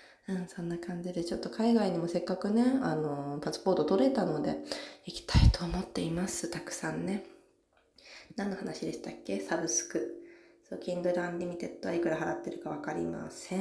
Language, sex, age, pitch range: Japanese, female, 20-39, 180-270 Hz